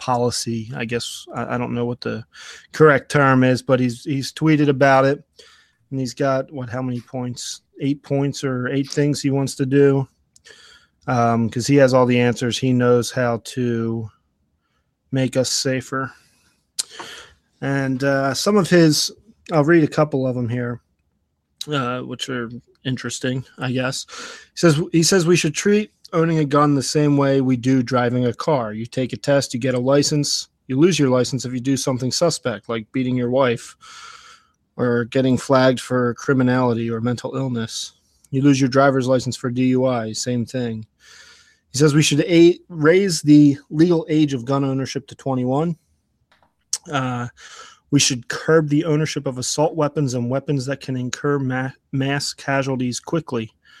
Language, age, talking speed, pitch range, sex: English, 20-39, 170 wpm, 125-145 Hz, male